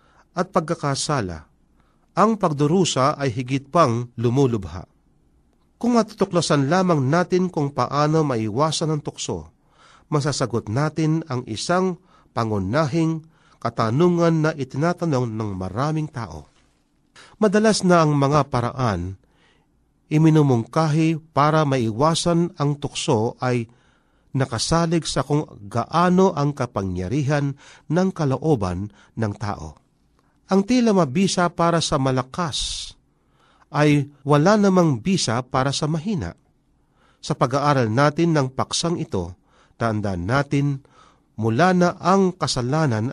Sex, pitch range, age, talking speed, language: male, 120-165 Hz, 50-69, 105 wpm, Filipino